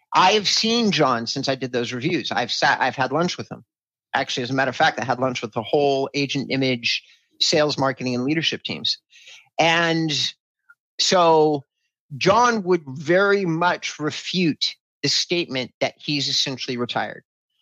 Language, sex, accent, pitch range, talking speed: English, male, American, 130-165 Hz, 160 wpm